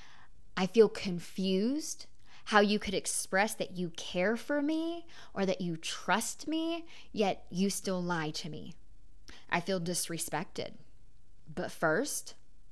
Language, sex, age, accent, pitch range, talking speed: English, female, 20-39, American, 175-220 Hz, 130 wpm